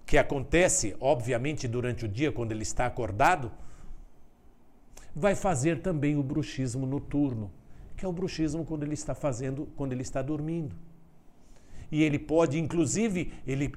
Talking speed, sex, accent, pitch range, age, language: 145 wpm, male, Brazilian, 125-165 Hz, 60-79, Portuguese